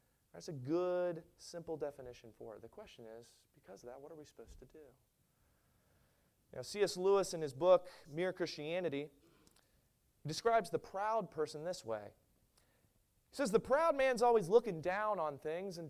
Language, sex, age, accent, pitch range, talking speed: English, male, 30-49, American, 130-195 Hz, 165 wpm